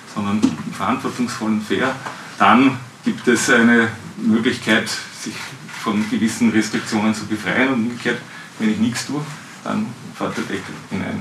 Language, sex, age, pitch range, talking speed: German, male, 40-59, 110-135 Hz, 140 wpm